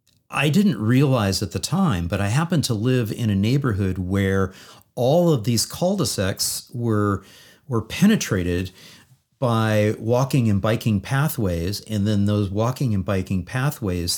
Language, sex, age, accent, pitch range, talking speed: English, male, 40-59, American, 100-130 Hz, 145 wpm